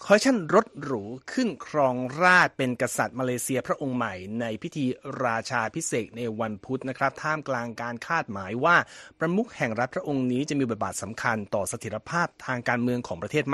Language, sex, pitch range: Thai, male, 120-155 Hz